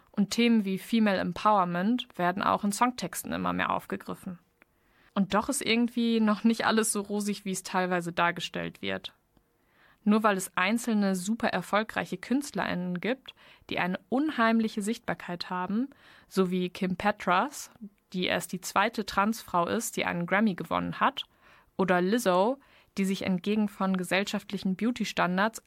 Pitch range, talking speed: 185-220 Hz, 145 wpm